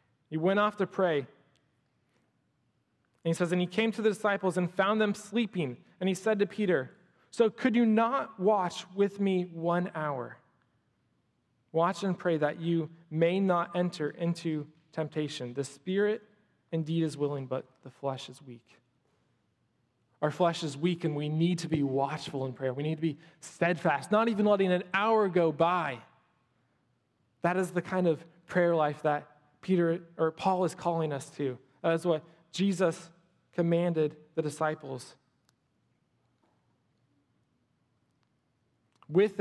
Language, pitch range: English, 150-185 Hz